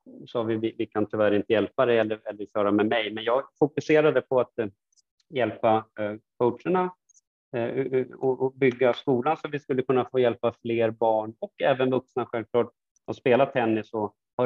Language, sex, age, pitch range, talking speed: Swedish, male, 30-49, 105-130 Hz, 190 wpm